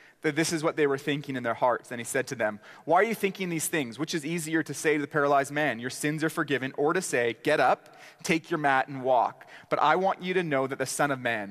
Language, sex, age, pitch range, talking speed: English, male, 30-49, 130-160 Hz, 285 wpm